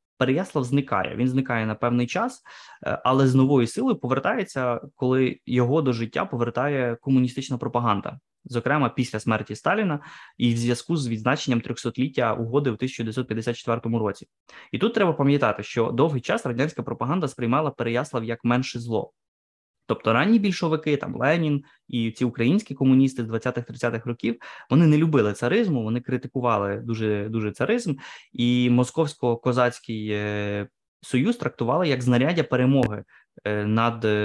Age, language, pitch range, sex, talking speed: 20-39, Ukrainian, 115-140 Hz, male, 135 wpm